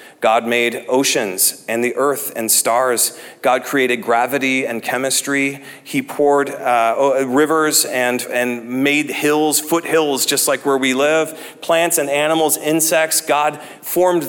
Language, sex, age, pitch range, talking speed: English, male, 40-59, 145-190 Hz, 140 wpm